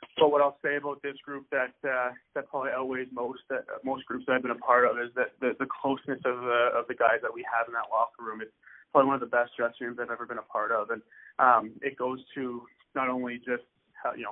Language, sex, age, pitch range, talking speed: English, male, 20-39, 120-135 Hz, 265 wpm